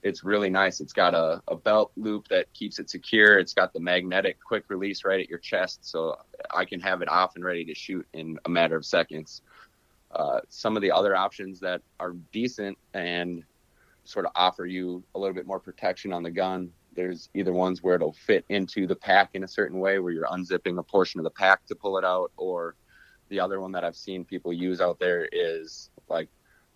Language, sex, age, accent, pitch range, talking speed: English, male, 30-49, American, 85-95 Hz, 220 wpm